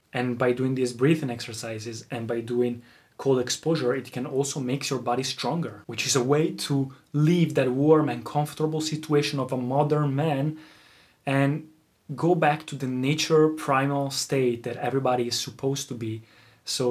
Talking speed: 170 wpm